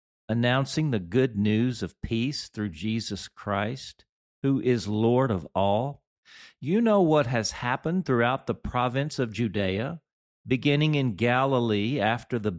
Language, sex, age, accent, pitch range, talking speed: English, male, 50-69, American, 90-120 Hz, 140 wpm